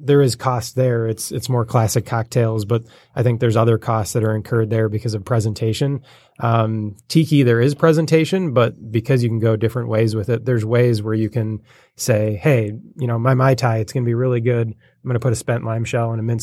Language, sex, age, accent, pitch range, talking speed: English, male, 20-39, American, 110-130 Hz, 235 wpm